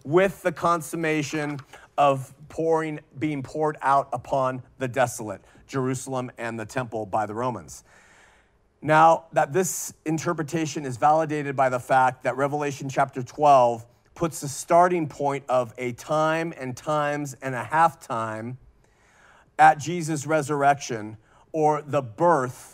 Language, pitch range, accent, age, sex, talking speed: English, 125-155 Hz, American, 40-59, male, 130 wpm